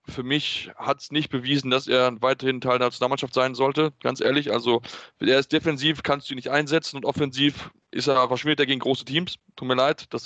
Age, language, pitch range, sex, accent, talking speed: 20-39, German, 130-150 Hz, male, German, 220 wpm